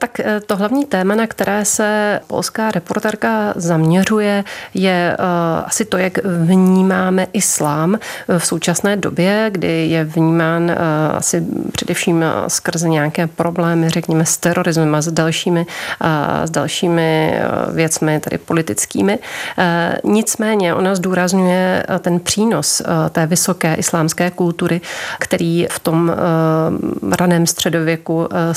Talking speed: 110 wpm